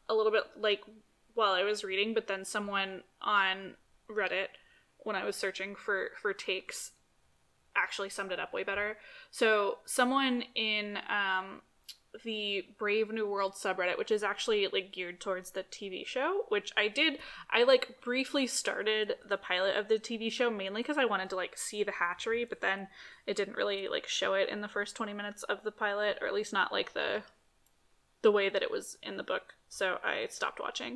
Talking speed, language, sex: 195 wpm, English, female